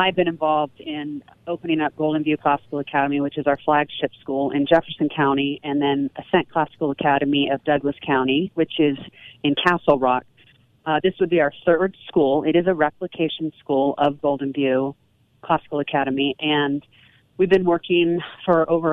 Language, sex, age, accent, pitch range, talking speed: English, female, 30-49, American, 135-160 Hz, 170 wpm